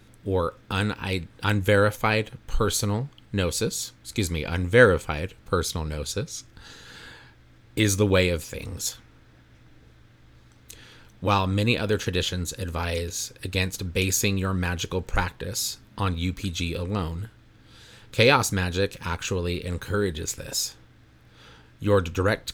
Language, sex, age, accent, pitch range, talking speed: English, male, 30-49, American, 85-100 Hz, 90 wpm